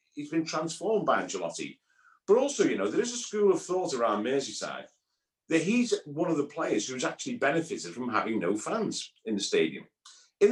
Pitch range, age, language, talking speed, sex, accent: 130-205 Hz, 50-69, English, 195 wpm, male, British